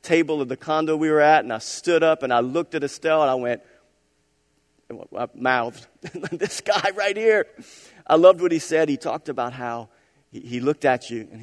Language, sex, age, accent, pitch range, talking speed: English, male, 40-59, American, 115-170 Hz, 200 wpm